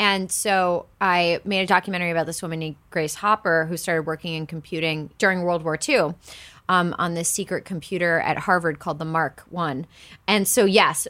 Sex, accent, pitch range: female, American, 160-185 Hz